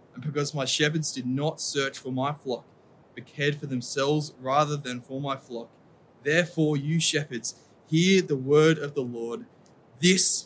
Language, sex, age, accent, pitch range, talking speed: English, male, 20-39, Australian, 125-145 Hz, 165 wpm